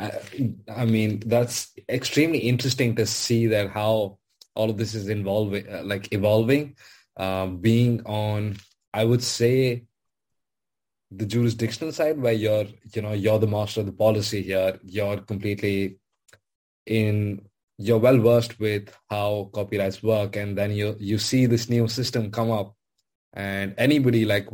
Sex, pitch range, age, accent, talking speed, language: male, 100-120 Hz, 20-39, Indian, 145 wpm, English